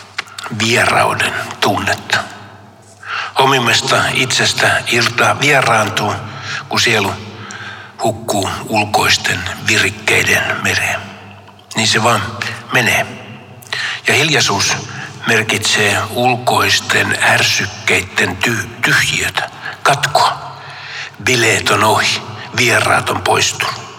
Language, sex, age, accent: Finnish, male, 60-79, native